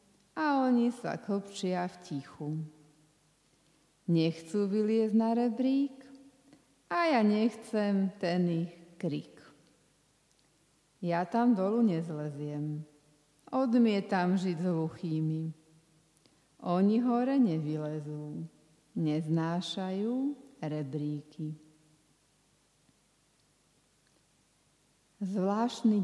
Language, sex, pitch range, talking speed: Slovak, female, 160-215 Hz, 65 wpm